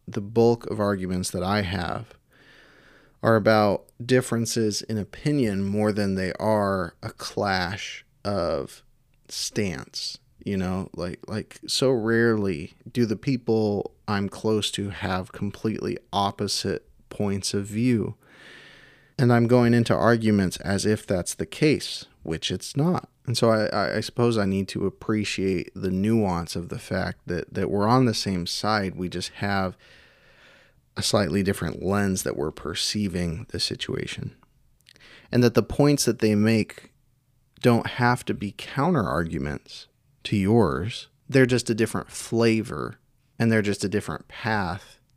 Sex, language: male, English